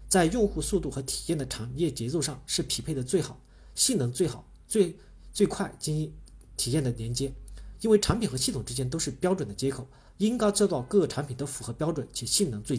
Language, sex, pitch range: Chinese, male, 125-170 Hz